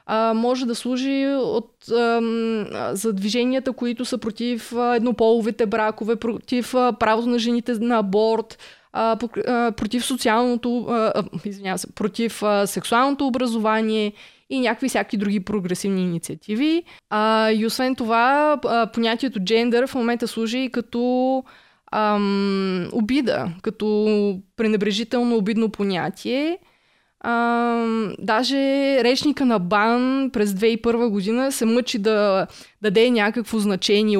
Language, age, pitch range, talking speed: Bulgarian, 20-39, 205-245 Hz, 100 wpm